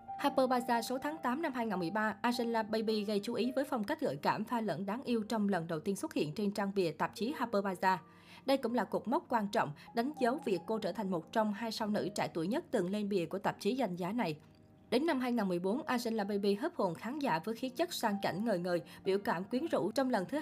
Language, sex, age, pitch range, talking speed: Vietnamese, female, 20-39, 195-240 Hz, 255 wpm